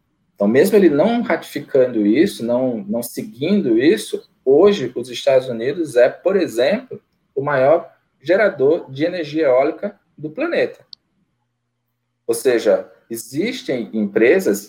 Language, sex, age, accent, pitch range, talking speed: Portuguese, male, 20-39, Brazilian, 115-180 Hz, 120 wpm